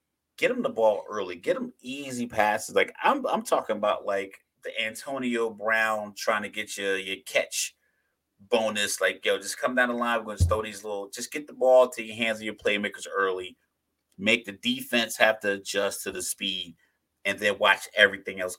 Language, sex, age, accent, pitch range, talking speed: English, male, 30-49, American, 100-115 Hz, 205 wpm